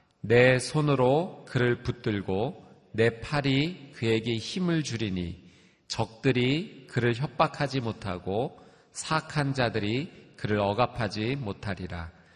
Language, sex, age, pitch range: Korean, male, 40-59, 110-150 Hz